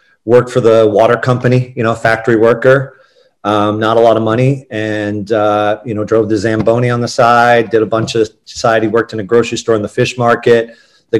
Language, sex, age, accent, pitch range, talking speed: English, male, 30-49, American, 110-130 Hz, 215 wpm